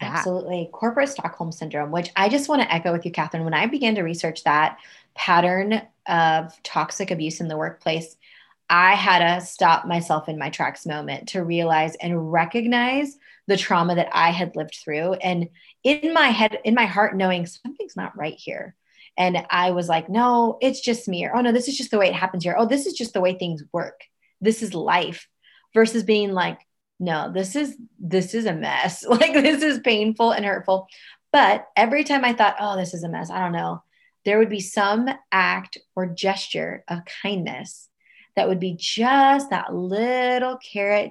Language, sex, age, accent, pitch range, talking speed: English, female, 20-39, American, 175-225 Hz, 195 wpm